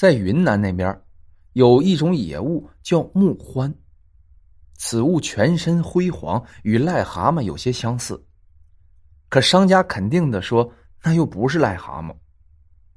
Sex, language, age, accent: male, Chinese, 20-39, native